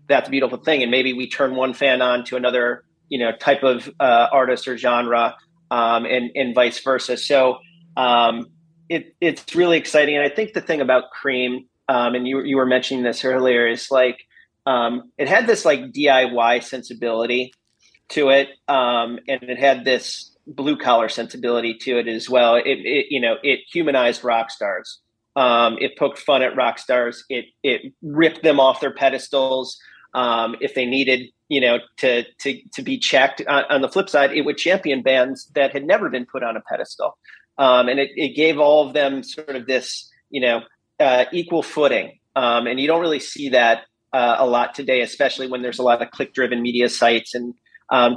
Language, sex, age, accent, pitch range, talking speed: English, male, 30-49, American, 120-140 Hz, 200 wpm